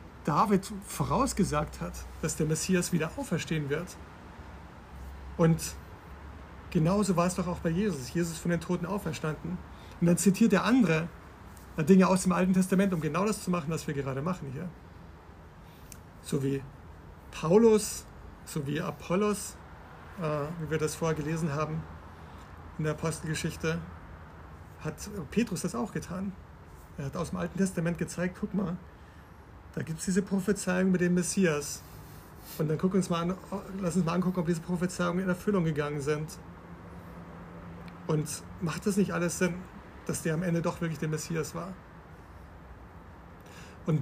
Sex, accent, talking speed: male, German, 155 wpm